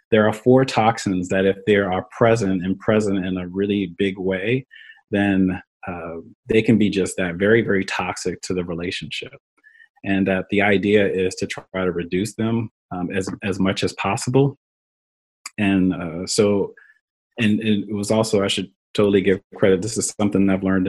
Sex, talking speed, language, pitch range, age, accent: male, 180 wpm, English, 95-120 Hz, 30-49, American